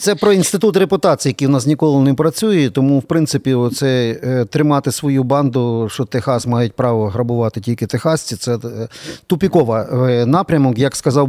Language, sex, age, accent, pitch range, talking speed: Ukrainian, male, 40-59, native, 130-170 Hz, 160 wpm